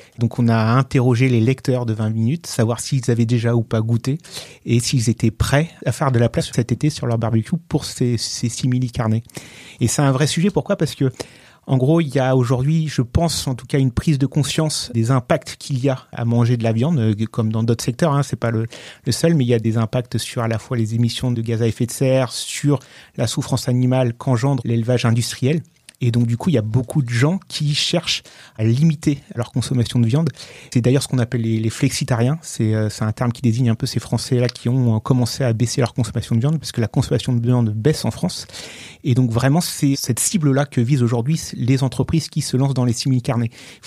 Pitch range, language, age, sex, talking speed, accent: 120-140 Hz, French, 30-49, male, 240 wpm, French